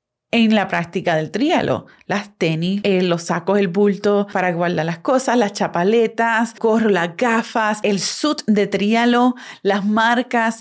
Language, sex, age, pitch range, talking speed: Spanish, female, 30-49, 195-245 Hz, 155 wpm